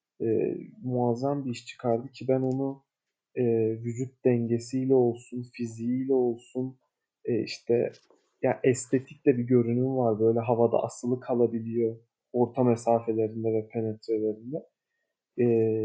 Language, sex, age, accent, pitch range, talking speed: Turkish, male, 40-59, native, 115-135 Hz, 115 wpm